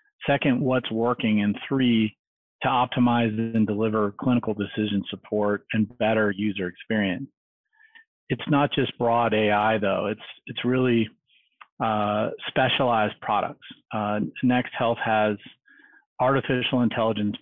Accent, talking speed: American, 115 wpm